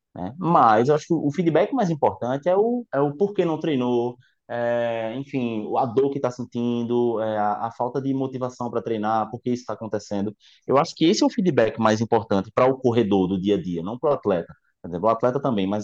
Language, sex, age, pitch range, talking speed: Portuguese, male, 20-39, 115-160 Hz, 225 wpm